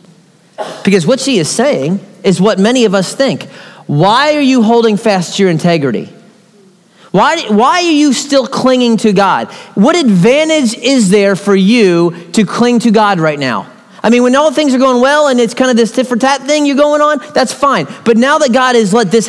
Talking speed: 205 wpm